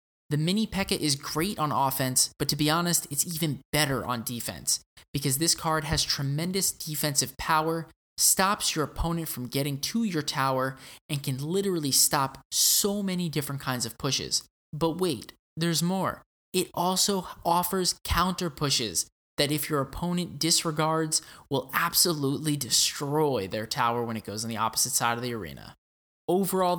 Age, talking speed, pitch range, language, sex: 20-39, 160 wpm, 125-170 Hz, English, male